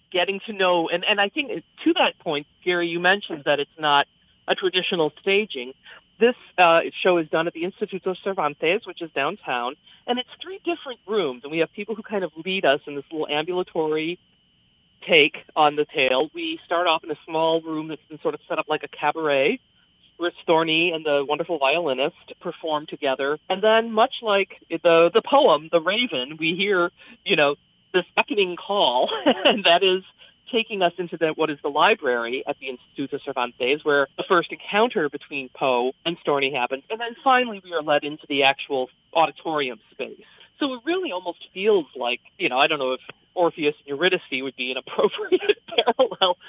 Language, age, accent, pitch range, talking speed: English, 40-59, American, 145-205 Hz, 190 wpm